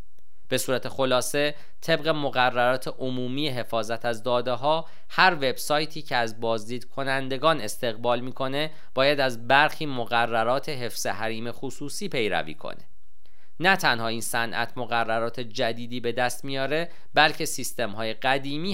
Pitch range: 115-150 Hz